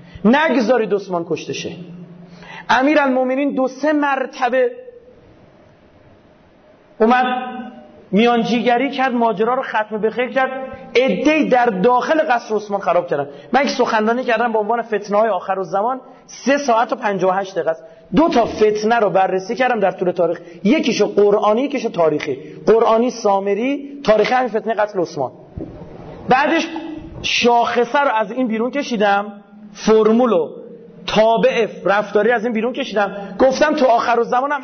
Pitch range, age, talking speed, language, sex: 185-255 Hz, 40-59, 135 wpm, Persian, male